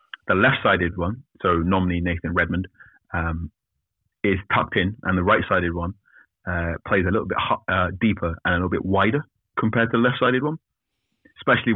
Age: 30-49